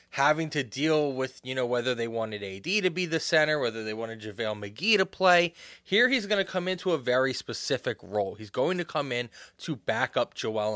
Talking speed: 225 wpm